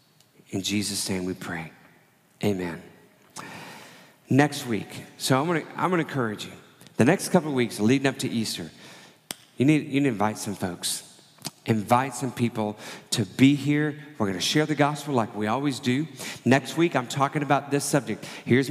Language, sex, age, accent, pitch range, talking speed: English, male, 40-59, American, 110-140 Hz, 175 wpm